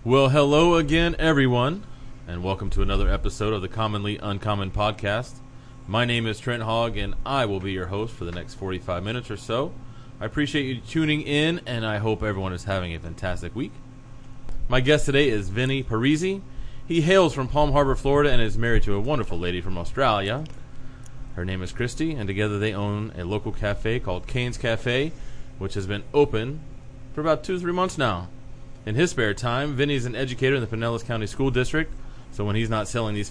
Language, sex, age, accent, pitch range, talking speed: English, male, 30-49, American, 105-135 Hz, 200 wpm